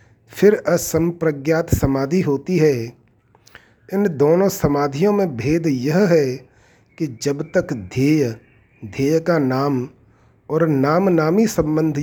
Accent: native